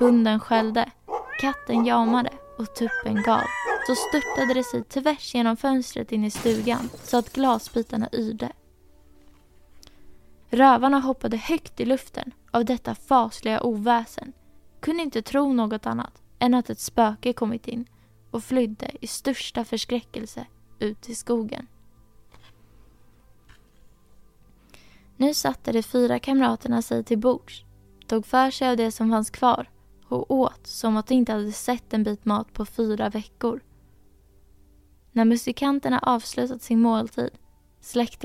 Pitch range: 210-255 Hz